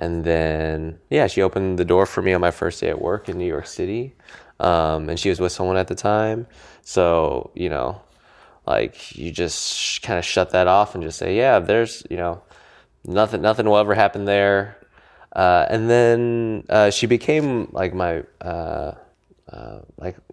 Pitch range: 85-105 Hz